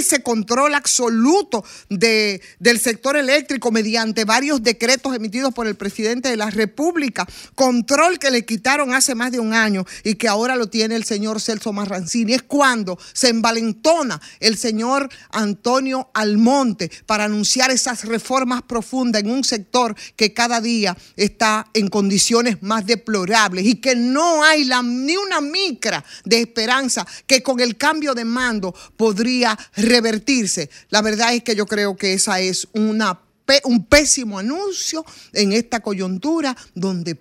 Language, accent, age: Spanish, American, 50-69